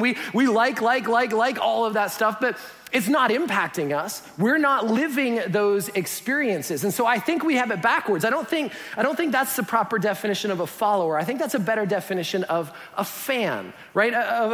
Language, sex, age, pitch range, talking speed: English, male, 30-49, 195-260 Hz, 215 wpm